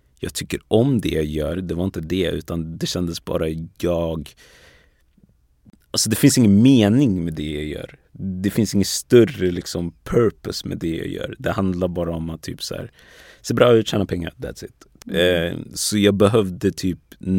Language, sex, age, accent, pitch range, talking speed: Swedish, male, 30-49, native, 85-100 Hz, 185 wpm